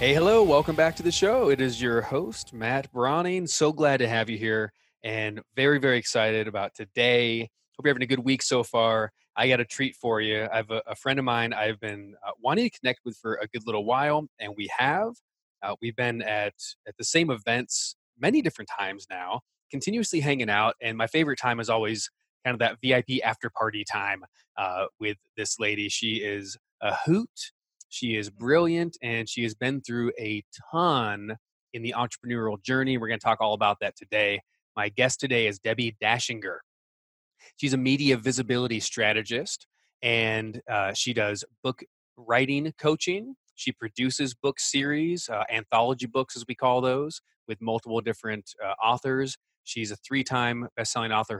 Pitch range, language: 110-130 Hz, English